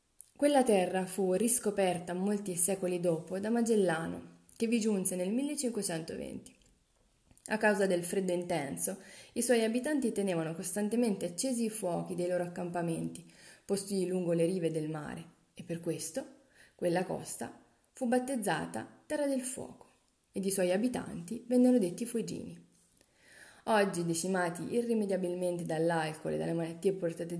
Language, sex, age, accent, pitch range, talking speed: Italian, female, 30-49, native, 175-240 Hz, 135 wpm